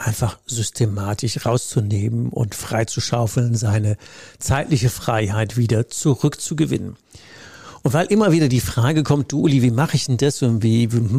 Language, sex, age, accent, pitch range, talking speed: German, male, 60-79, German, 115-135 Hz, 140 wpm